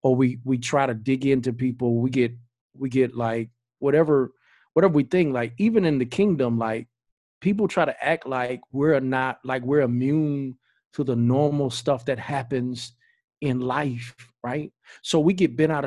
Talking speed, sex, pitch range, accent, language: 180 wpm, male, 120-145 Hz, American, English